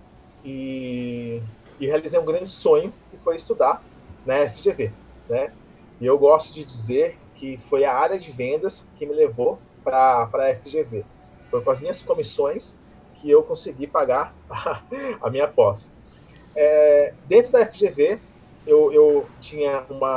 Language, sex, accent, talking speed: Portuguese, male, Brazilian, 150 wpm